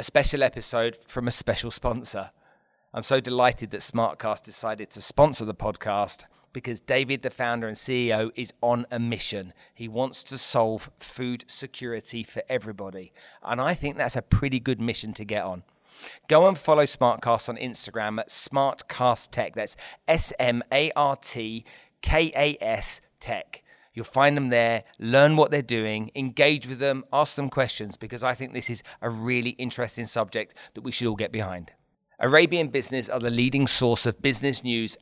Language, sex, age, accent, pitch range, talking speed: English, male, 40-59, British, 110-130 Hz, 165 wpm